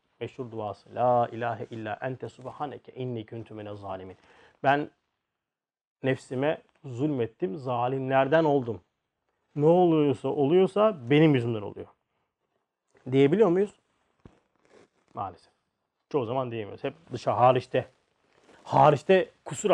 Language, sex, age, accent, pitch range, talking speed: Turkish, male, 40-59, native, 125-170 Hz, 95 wpm